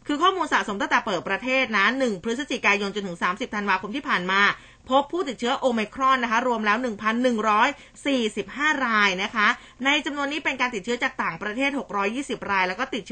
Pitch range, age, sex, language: 205-270 Hz, 20-39, female, Thai